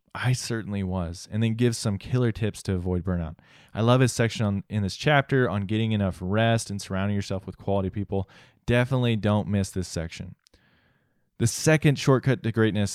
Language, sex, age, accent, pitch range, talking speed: English, male, 20-39, American, 95-120 Hz, 180 wpm